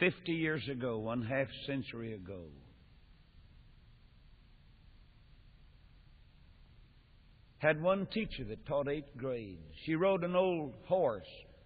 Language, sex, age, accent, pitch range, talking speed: English, male, 60-79, American, 100-145 Hz, 100 wpm